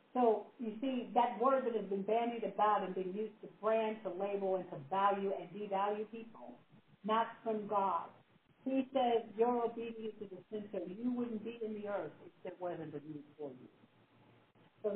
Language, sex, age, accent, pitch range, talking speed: English, female, 50-69, American, 190-225 Hz, 190 wpm